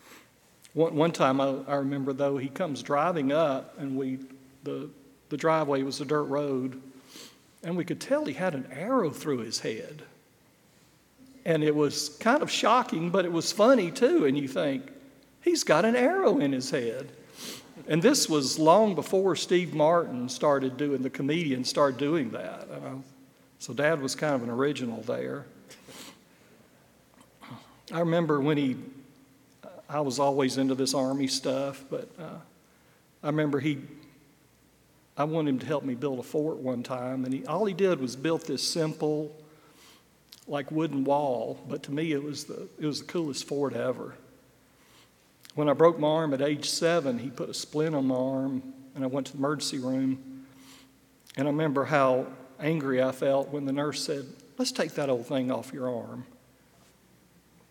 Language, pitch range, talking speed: English, 135-155 Hz, 170 wpm